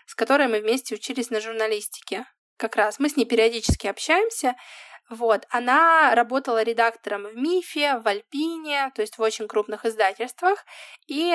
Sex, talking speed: female, 155 wpm